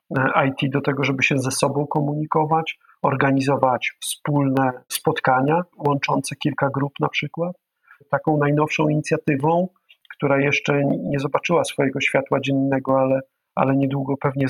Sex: male